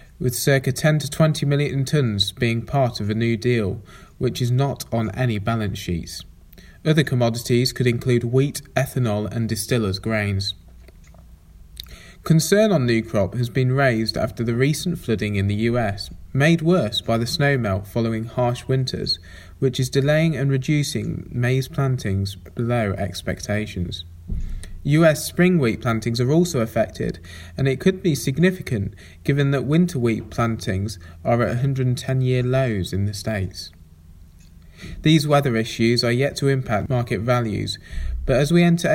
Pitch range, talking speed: 100-135 Hz, 150 wpm